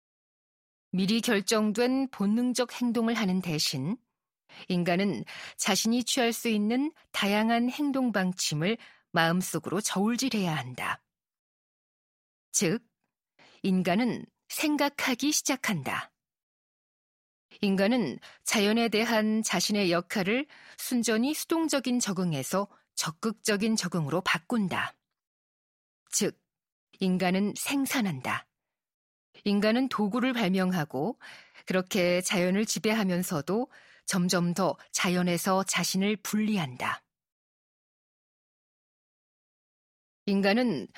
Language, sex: Korean, female